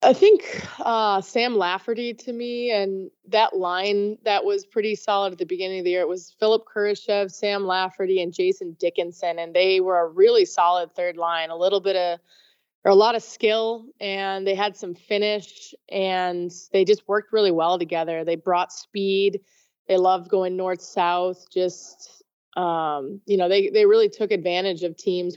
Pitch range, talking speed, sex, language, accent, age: 175-205 Hz, 180 wpm, female, English, American, 20-39